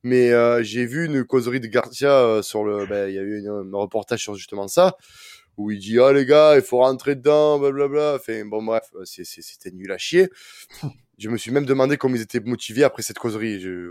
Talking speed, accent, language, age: 240 wpm, French, French, 20-39